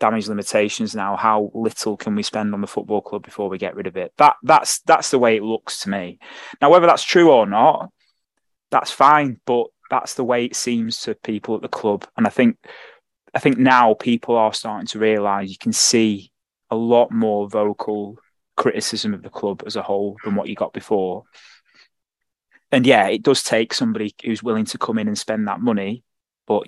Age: 20-39